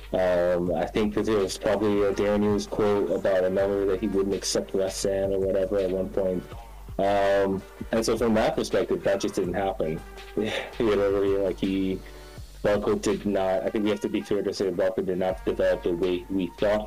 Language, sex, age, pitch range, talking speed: English, male, 20-39, 95-105 Hz, 205 wpm